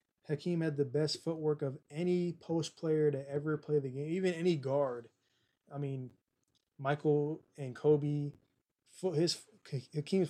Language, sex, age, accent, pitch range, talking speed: English, male, 20-39, American, 135-160 Hz, 140 wpm